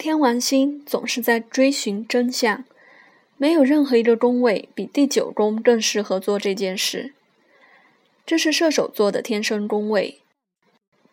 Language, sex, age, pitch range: Chinese, female, 20-39, 215-275 Hz